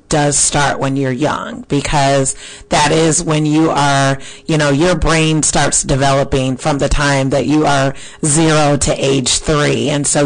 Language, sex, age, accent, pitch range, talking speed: English, female, 30-49, American, 145-170 Hz, 170 wpm